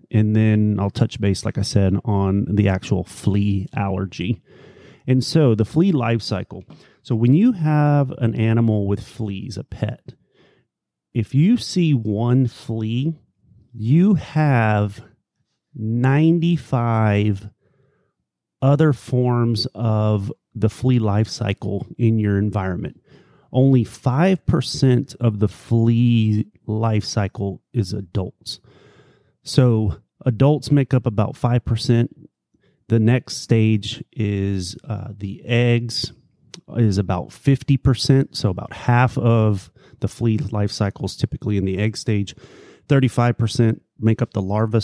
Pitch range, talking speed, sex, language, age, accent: 105-130 Hz, 120 wpm, male, English, 30-49, American